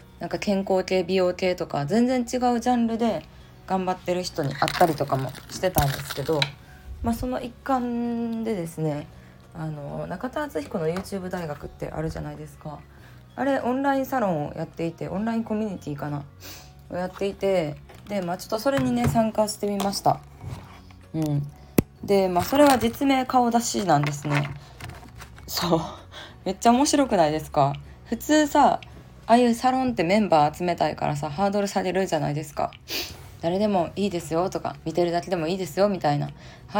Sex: female